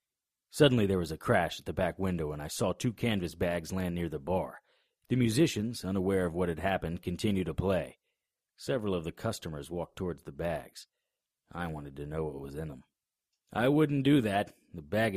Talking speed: 200 wpm